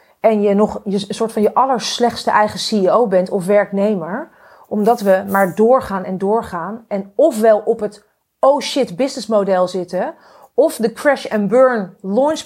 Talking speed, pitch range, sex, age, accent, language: 165 wpm, 185-240 Hz, female, 40-59, Dutch, Dutch